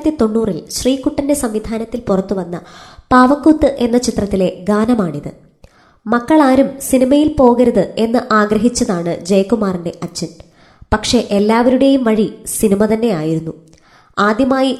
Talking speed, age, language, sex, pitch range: 90 wpm, 20-39, Malayalam, male, 190-270 Hz